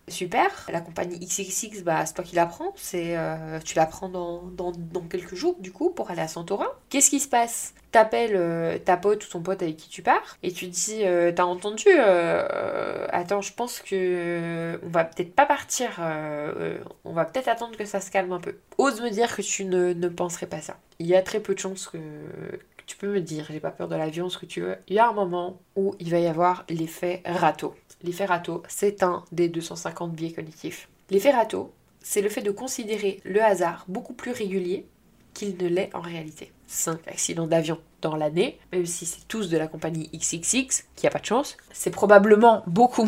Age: 20-39